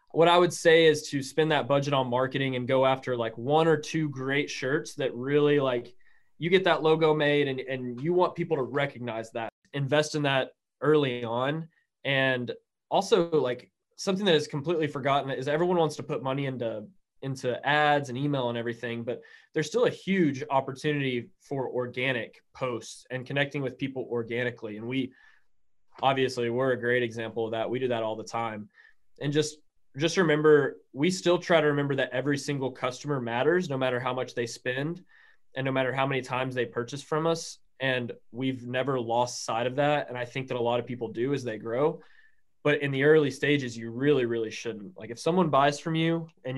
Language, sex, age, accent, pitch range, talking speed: English, male, 20-39, American, 125-155 Hz, 200 wpm